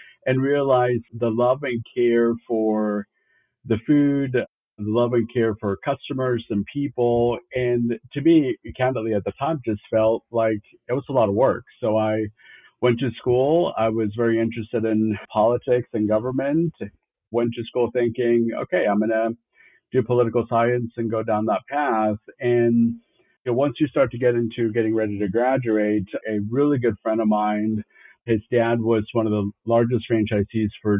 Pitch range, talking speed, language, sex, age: 110-120 Hz, 170 wpm, English, male, 50-69